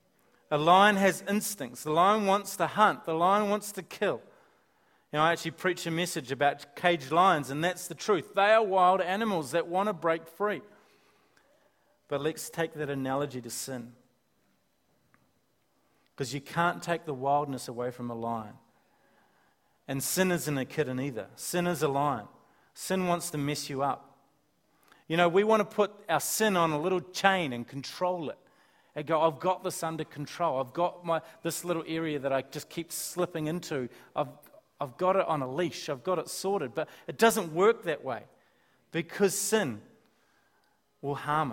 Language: English